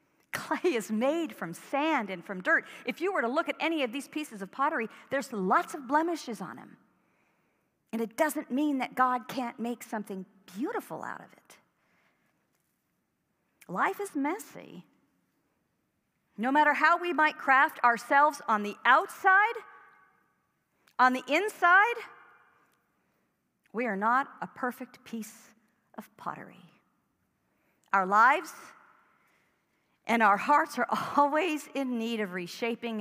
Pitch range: 200-290 Hz